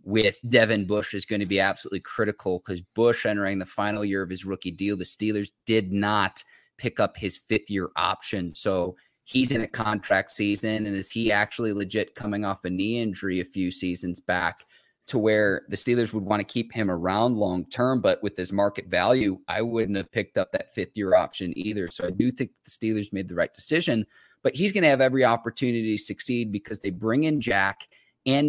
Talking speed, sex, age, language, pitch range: 210 wpm, male, 20-39, English, 100-115 Hz